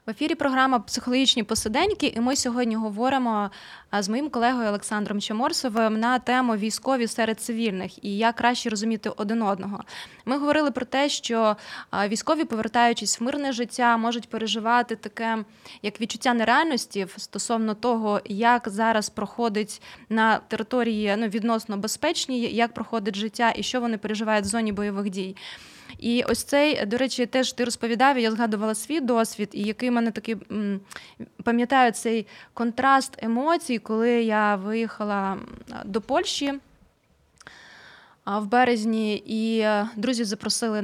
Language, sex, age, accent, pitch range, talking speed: Ukrainian, female, 20-39, native, 215-250 Hz, 140 wpm